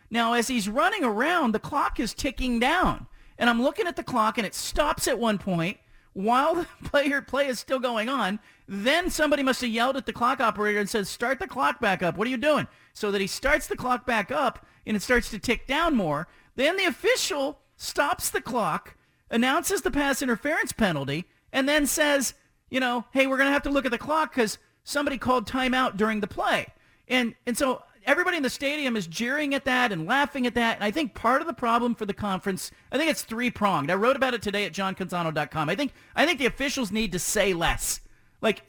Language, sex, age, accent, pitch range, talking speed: English, male, 40-59, American, 210-275 Hz, 225 wpm